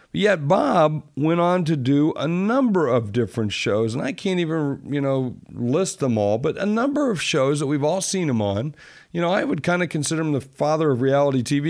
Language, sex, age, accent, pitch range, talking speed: English, male, 50-69, American, 125-160 Hz, 225 wpm